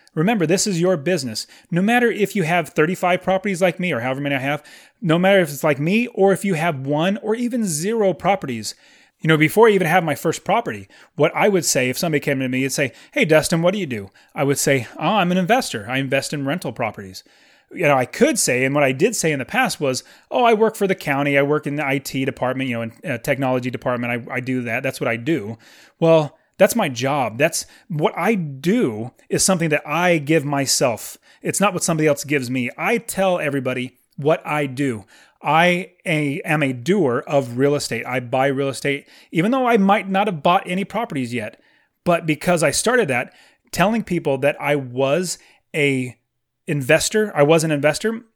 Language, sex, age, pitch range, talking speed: English, male, 30-49, 140-190 Hz, 220 wpm